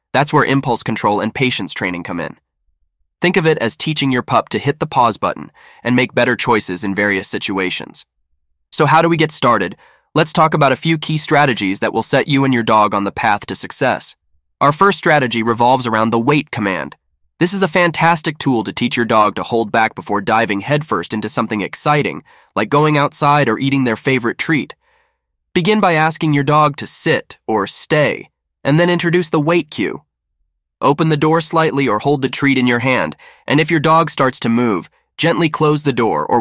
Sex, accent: male, American